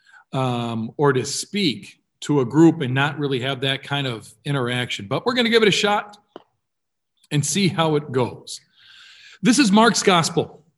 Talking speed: 180 wpm